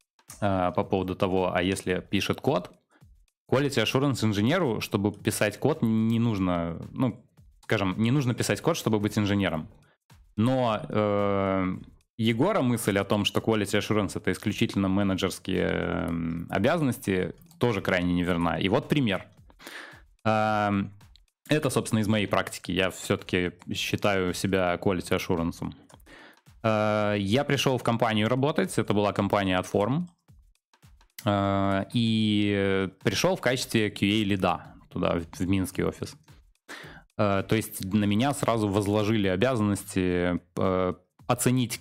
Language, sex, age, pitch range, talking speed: Russian, male, 20-39, 95-115 Hz, 120 wpm